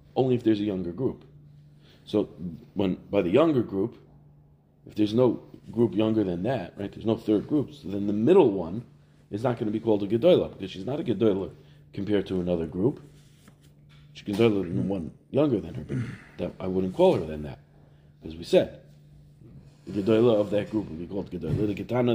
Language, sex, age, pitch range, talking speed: English, male, 40-59, 100-135 Hz, 205 wpm